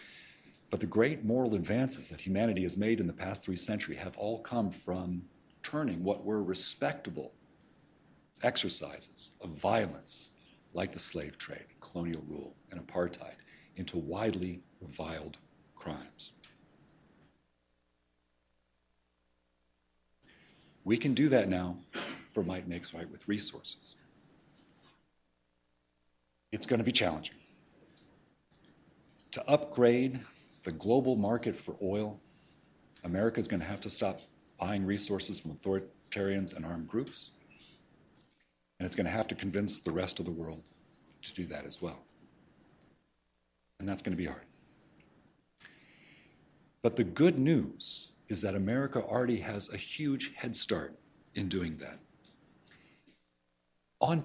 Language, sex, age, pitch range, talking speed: English, male, 50-69, 75-105 Hz, 125 wpm